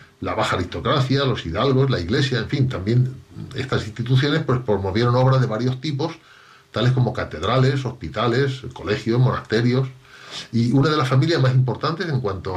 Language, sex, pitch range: Spanish, male, 100-130 Hz